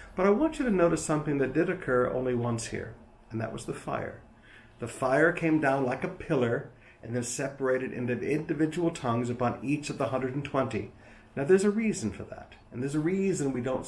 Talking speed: 210 wpm